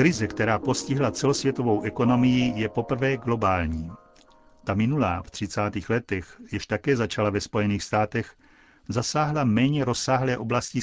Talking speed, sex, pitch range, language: 125 wpm, male, 105-130 Hz, Czech